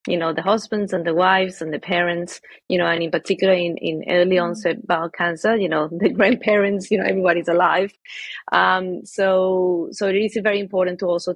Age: 30-49